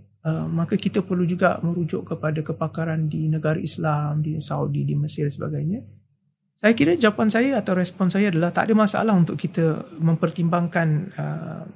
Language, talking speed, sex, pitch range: Malay, 160 wpm, male, 155-185 Hz